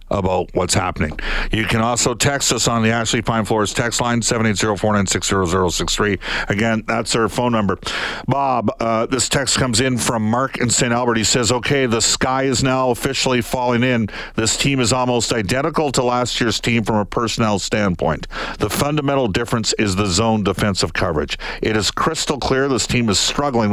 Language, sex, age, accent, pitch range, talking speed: English, male, 50-69, American, 105-125 Hz, 200 wpm